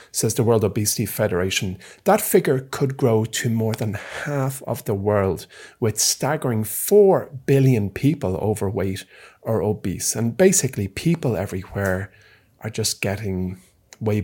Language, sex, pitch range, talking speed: English, male, 100-135 Hz, 135 wpm